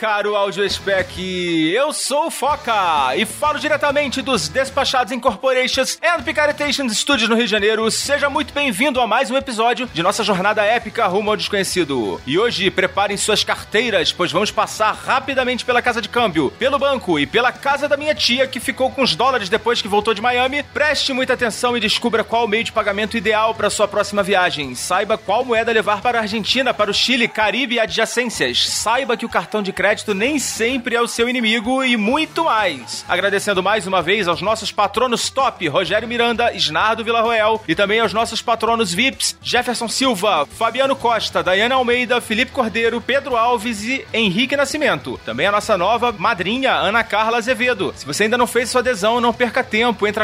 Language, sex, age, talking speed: Portuguese, male, 30-49, 185 wpm